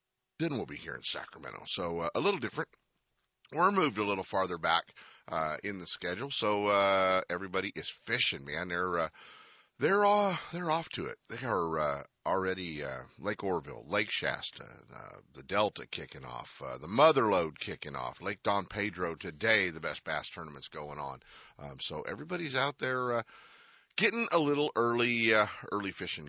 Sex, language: male, English